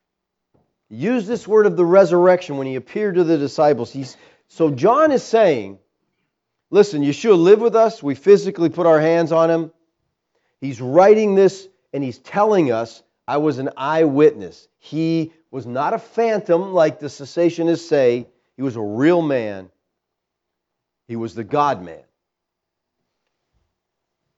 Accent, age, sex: American, 40-59, male